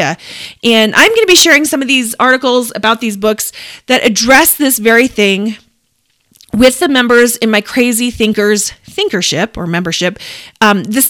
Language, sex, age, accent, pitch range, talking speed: English, female, 30-49, American, 215-285 Hz, 160 wpm